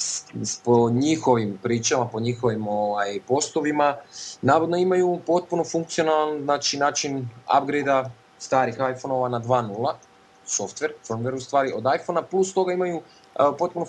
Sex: male